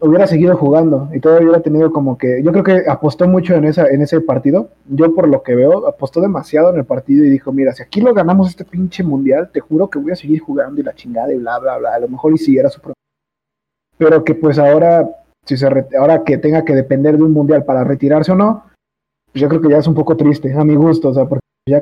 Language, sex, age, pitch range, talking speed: Spanish, male, 20-39, 135-165 Hz, 265 wpm